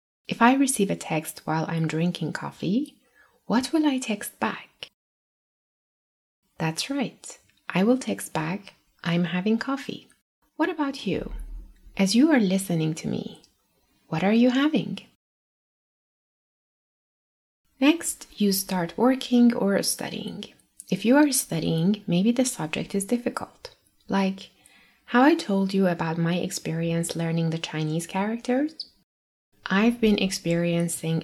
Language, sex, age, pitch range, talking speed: English, female, 20-39, 165-240 Hz, 125 wpm